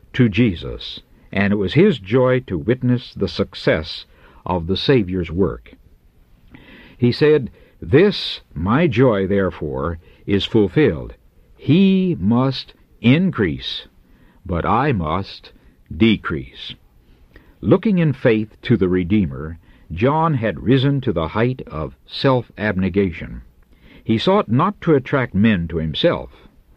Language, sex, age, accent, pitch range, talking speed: English, male, 60-79, American, 85-130 Hz, 115 wpm